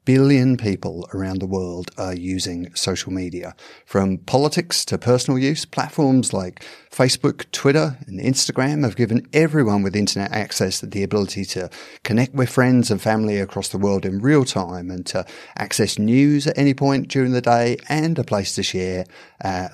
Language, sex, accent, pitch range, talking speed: English, male, British, 95-125 Hz, 170 wpm